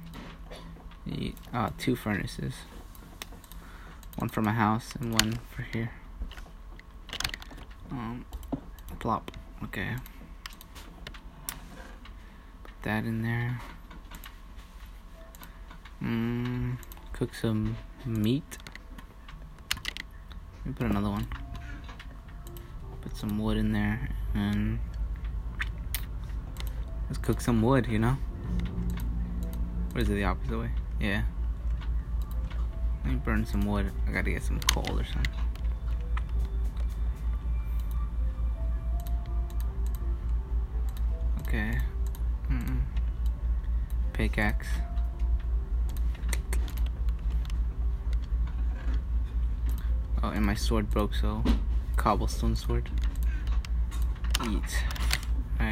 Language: English